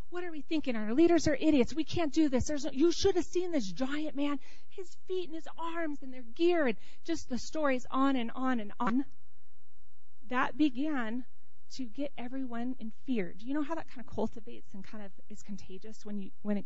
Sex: female